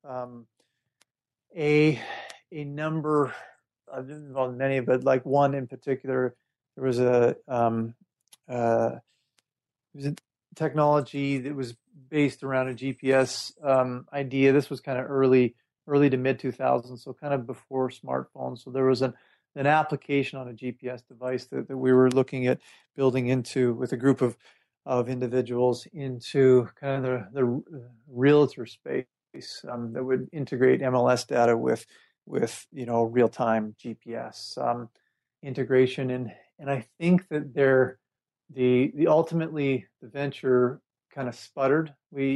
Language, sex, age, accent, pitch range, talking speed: English, male, 40-59, American, 120-140 Hz, 150 wpm